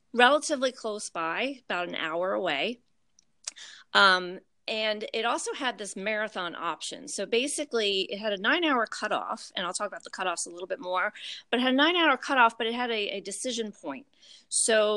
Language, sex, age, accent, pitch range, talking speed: English, female, 40-59, American, 180-235 Hz, 195 wpm